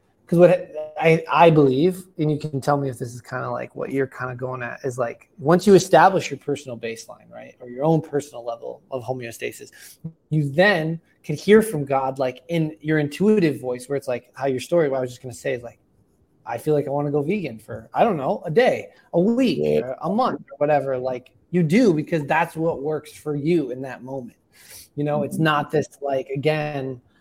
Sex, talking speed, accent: male, 230 wpm, American